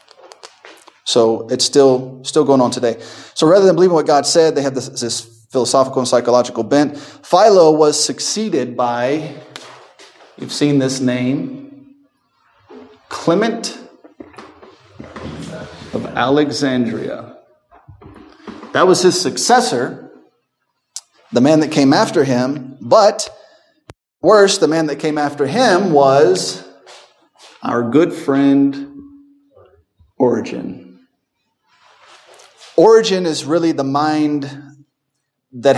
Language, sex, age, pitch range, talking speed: English, male, 30-49, 130-175 Hz, 105 wpm